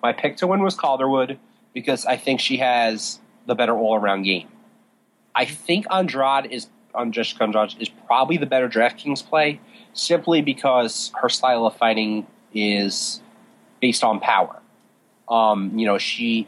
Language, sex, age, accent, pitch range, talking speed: English, male, 30-49, American, 110-155 Hz, 145 wpm